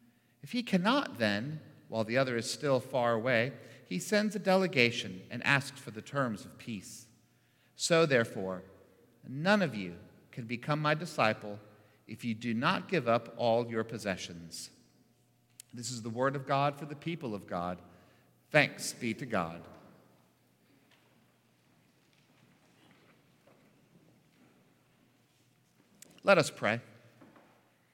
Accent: American